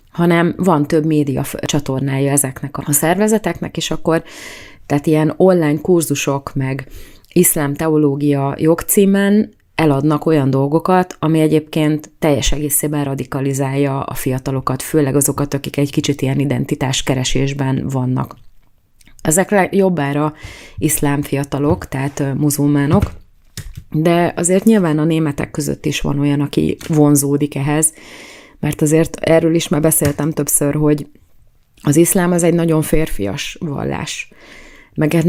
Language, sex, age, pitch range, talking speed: Hungarian, female, 30-49, 140-160 Hz, 120 wpm